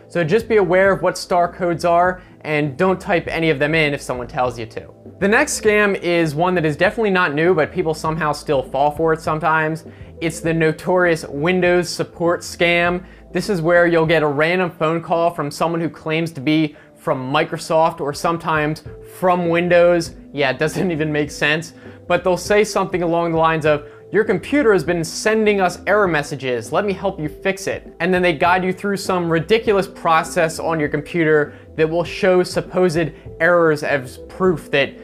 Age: 20-39